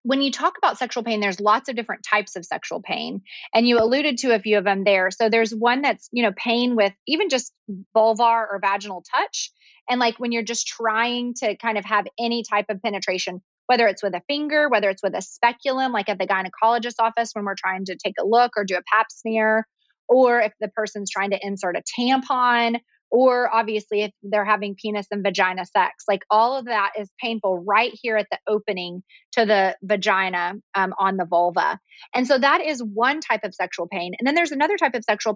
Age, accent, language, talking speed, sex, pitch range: 30-49, American, English, 220 wpm, female, 200-240 Hz